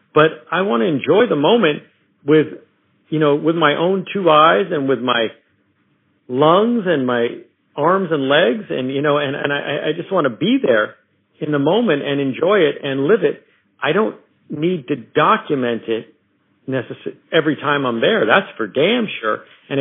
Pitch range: 135-165 Hz